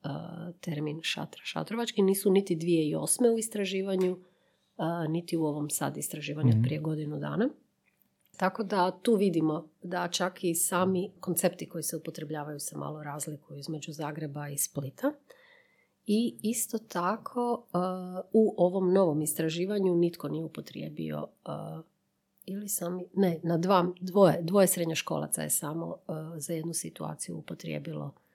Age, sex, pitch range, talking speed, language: 40-59, female, 155-195 Hz, 125 wpm, Croatian